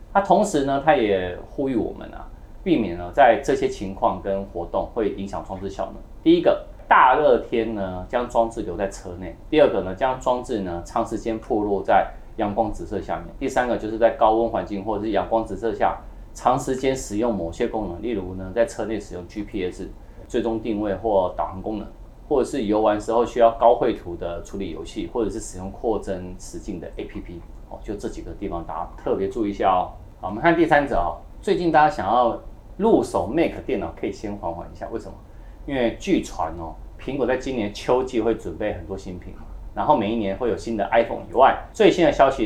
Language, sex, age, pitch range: Chinese, male, 30-49, 95-115 Hz